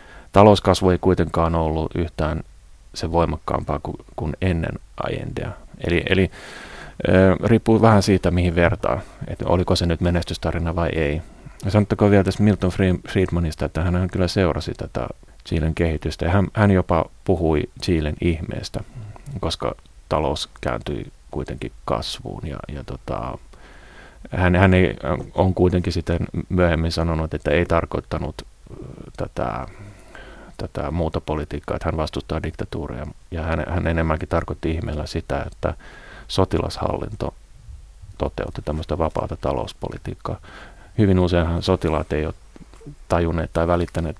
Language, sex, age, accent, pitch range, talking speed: Finnish, male, 30-49, native, 80-95 Hz, 120 wpm